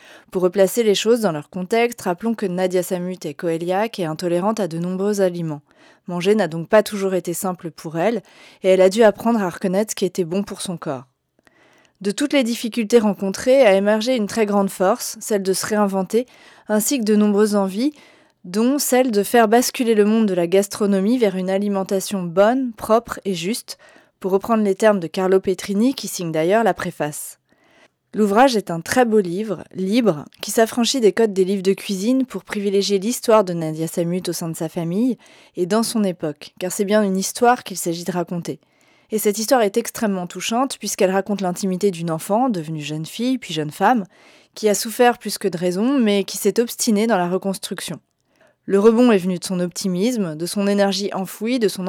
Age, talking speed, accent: 20-39, 200 wpm, French